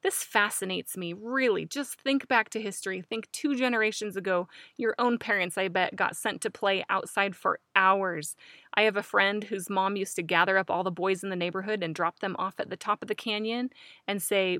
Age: 20-39